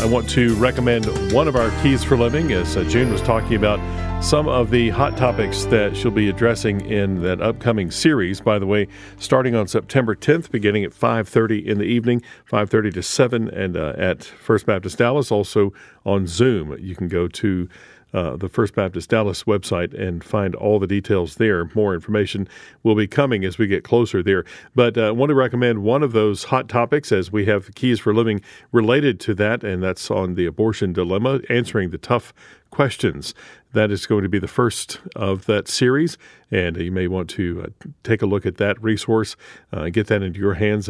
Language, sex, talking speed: English, male, 200 wpm